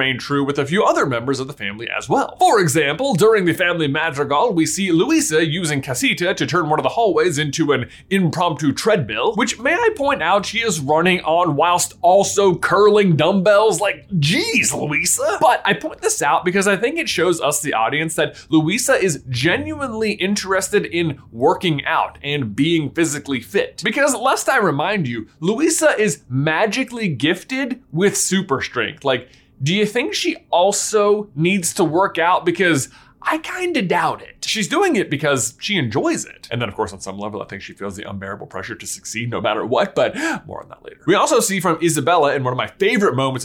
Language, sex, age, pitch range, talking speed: English, male, 20-39, 145-205 Hz, 195 wpm